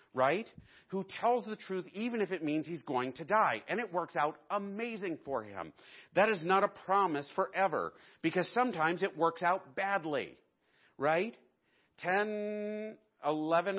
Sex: male